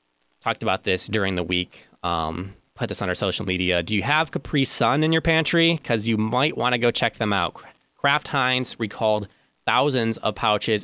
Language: English